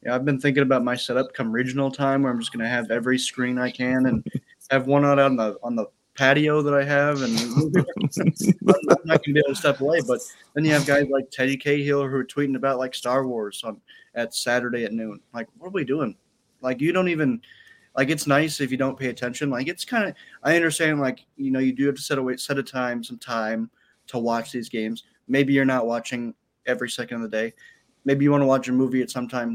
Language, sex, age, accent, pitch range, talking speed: English, male, 20-39, American, 120-140 Hz, 240 wpm